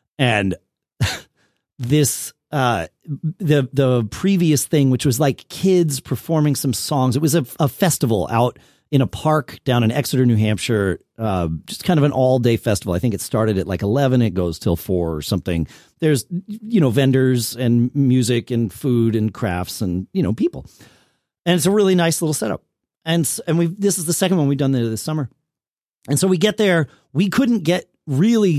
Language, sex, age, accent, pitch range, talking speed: English, male, 40-59, American, 90-145 Hz, 195 wpm